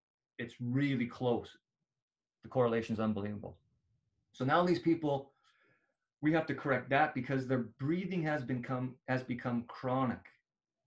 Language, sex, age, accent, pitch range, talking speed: French, male, 40-59, American, 115-150 Hz, 125 wpm